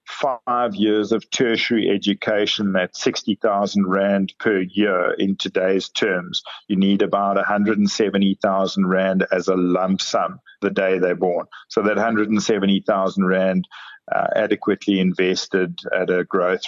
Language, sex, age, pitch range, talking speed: English, male, 50-69, 95-105 Hz, 130 wpm